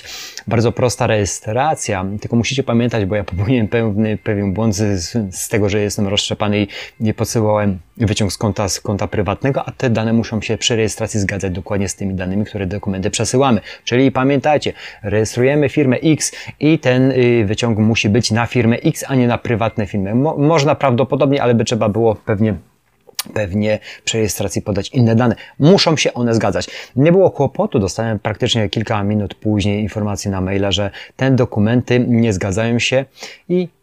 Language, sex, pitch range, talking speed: Polish, male, 105-125 Hz, 165 wpm